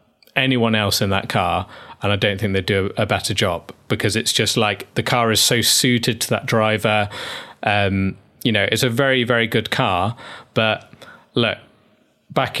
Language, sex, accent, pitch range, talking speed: English, male, British, 100-120 Hz, 180 wpm